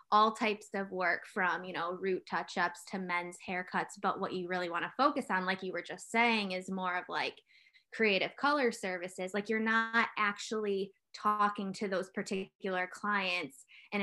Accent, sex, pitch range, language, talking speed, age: American, female, 185-230 Hz, English, 180 wpm, 10-29